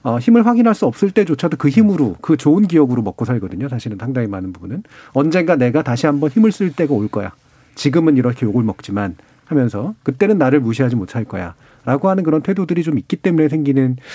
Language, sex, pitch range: Korean, male, 120-170 Hz